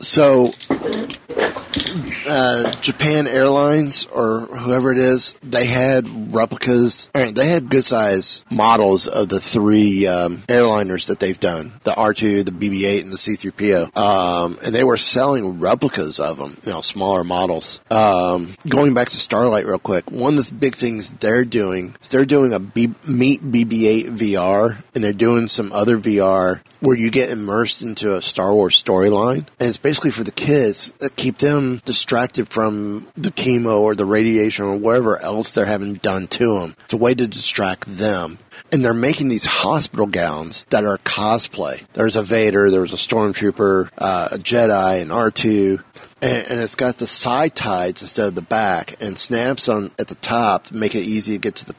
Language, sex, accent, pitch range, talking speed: English, male, American, 100-125 Hz, 180 wpm